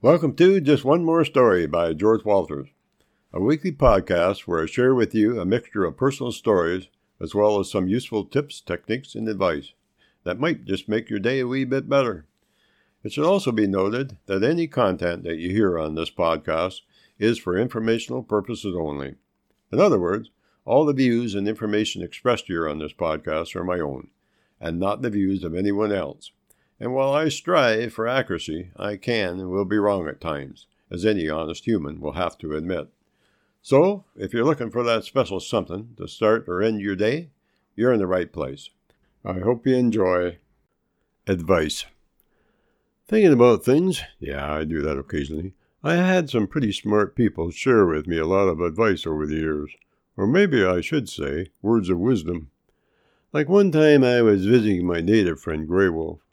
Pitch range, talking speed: 90-125 Hz, 185 wpm